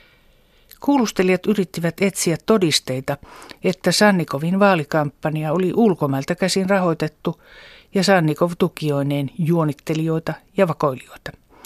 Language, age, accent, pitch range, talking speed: Finnish, 60-79, native, 150-195 Hz, 85 wpm